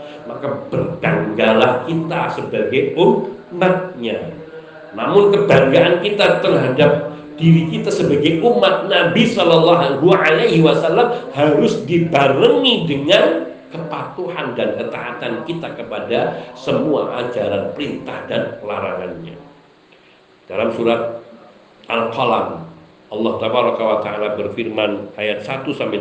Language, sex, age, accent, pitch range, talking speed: Indonesian, male, 50-69, native, 105-150 Hz, 95 wpm